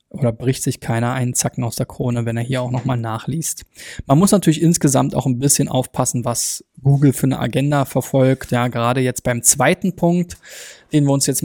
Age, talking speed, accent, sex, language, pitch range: 20-39, 205 wpm, German, male, German, 135-160 Hz